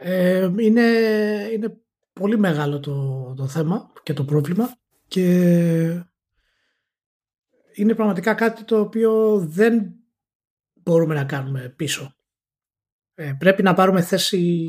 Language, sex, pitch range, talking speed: Greek, male, 140-180 Hz, 110 wpm